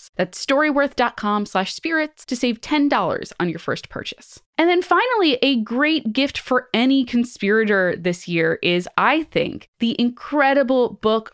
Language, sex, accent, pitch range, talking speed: English, female, American, 195-270 Hz, 145 wpm